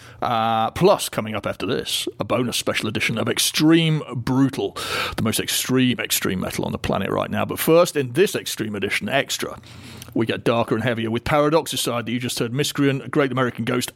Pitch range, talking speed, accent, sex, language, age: 115-145 Hz, 195 wpm, British, male, English, 40-59